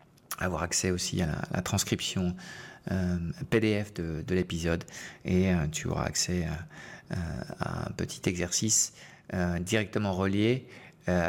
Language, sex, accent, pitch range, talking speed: French, male, French, 90-105 Hz, 140 wpm